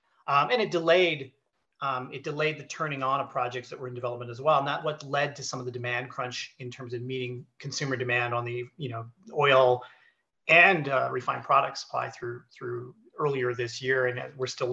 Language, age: English, 40-59